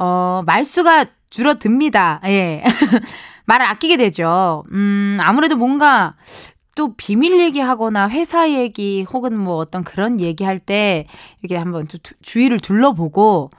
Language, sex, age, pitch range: Korean, female, 20-39, 185-285 Hz